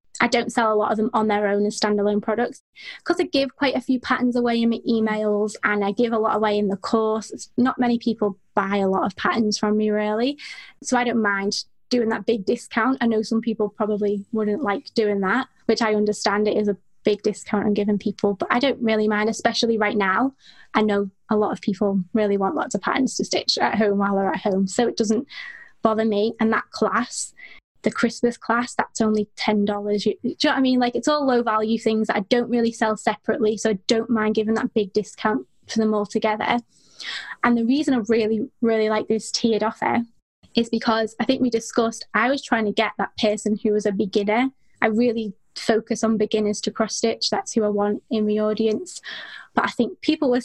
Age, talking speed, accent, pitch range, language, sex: 20-39, 225 wpm, British, 210-235 Hz, English, female